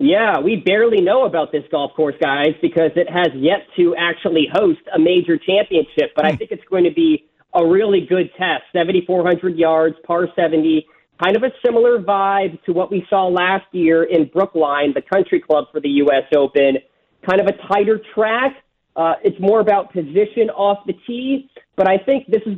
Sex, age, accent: male, 40-59, American